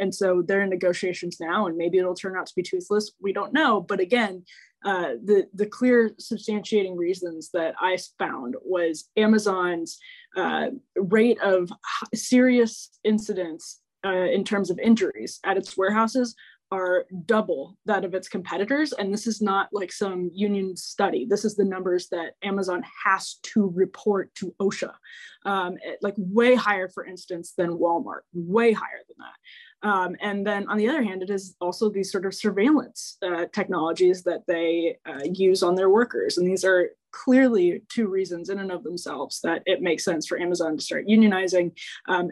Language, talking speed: English, 175 wpm